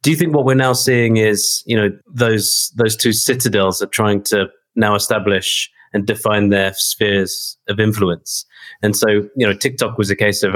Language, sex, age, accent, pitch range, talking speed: English, male, 30-49, British, 100-120 Hz, 195 wpm